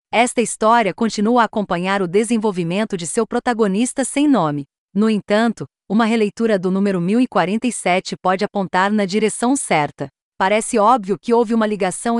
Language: Portuguese